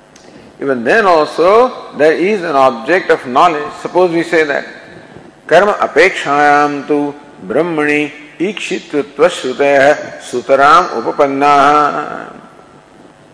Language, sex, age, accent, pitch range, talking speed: English, male, 50-69, Indian, 140-185 Hz, 95 wpm